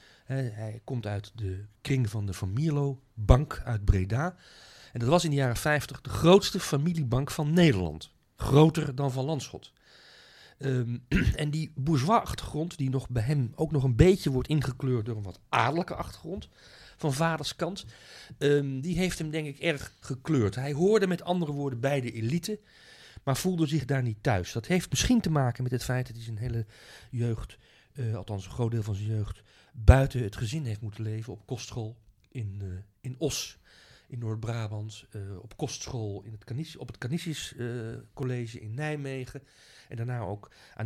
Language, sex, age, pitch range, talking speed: Dutch, male, 40-59, 115-150 Hz, 175 wpm